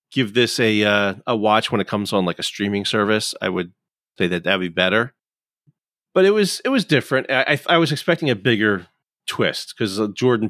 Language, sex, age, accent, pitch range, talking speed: English, male, 30-49, American, 100-130 Hz, 210 wpm